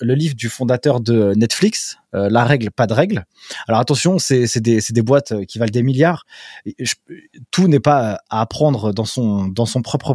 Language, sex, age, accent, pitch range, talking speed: French, male, 20-39, French, 120-155 Hz, 200 wpm